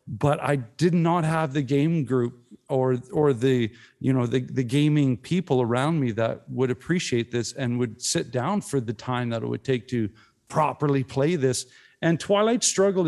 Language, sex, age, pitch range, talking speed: English, male, 50-69, 125-165 Hz, 190 wpm